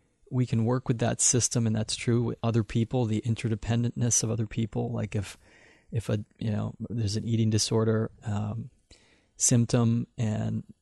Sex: male